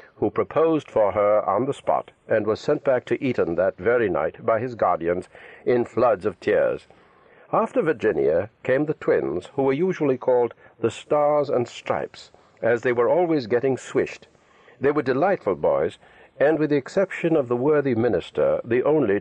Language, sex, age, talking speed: English, male, 60-79, 175 wpm